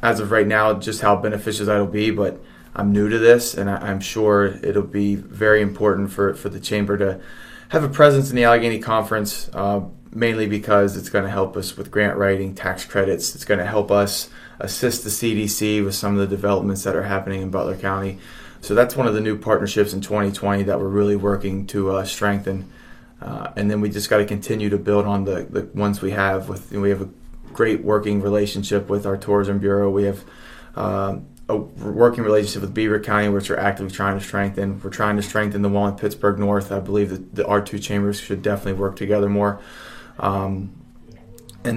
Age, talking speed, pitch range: 20-39, 210 wpm, 100-105 Hz